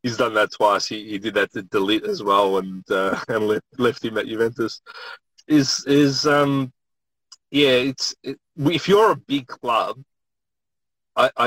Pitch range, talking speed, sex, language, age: 100-125 Hz, 165 wpm, male, English, 30-49